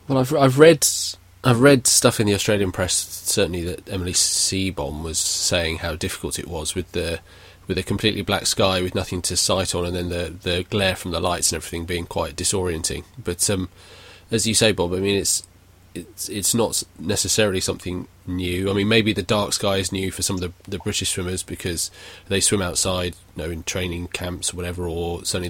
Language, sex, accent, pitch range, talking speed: English, male, British, 90-100 Hz, 210 wpm